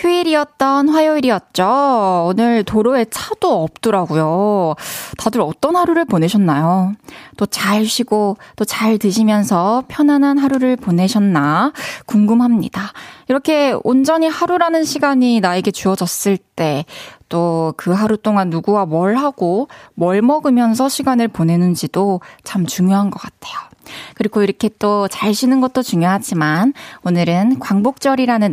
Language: Korean